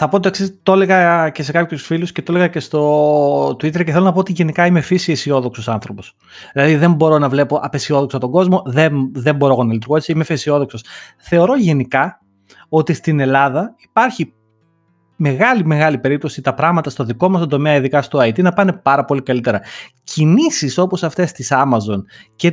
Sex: male